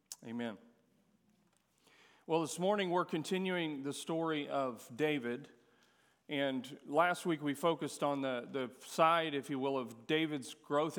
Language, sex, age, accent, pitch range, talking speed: English, male, 40-59, American, 130-155 Hz, 135 wpm